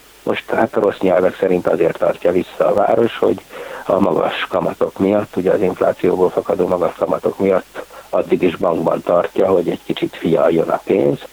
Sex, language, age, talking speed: male, Hungarian, 60-79, 175 wpm